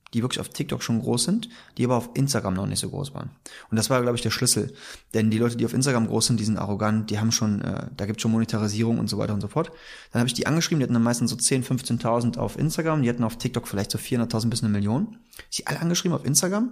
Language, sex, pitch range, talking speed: German, male, 110-140 Hz, 285 wpm